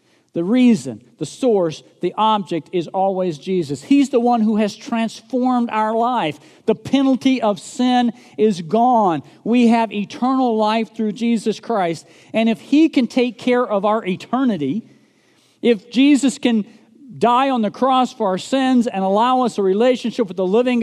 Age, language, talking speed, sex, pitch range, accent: 50-69, English, 165 wpm, male, 165-245 Hz, American